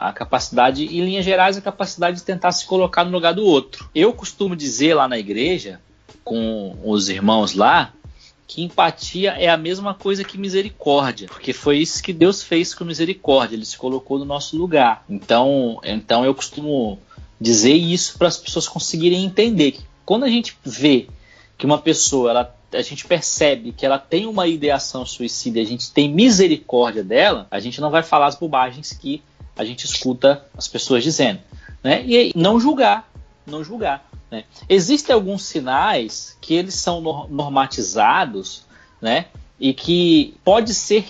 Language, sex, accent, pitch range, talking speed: Portuguese, male, Brazilian, 130-185 Hz, 170 wpm